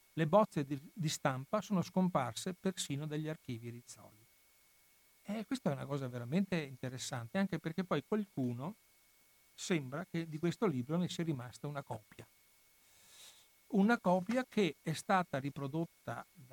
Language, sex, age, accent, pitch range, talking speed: Italian, male, 60-79, native, 135-180 Hz, 140 wpm